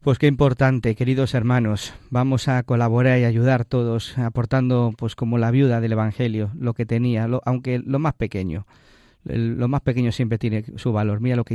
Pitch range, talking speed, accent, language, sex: 115-135 Hz, 190 wpm, Spanish, Spanish, male